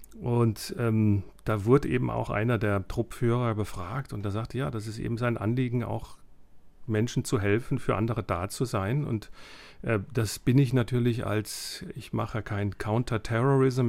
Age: 40-59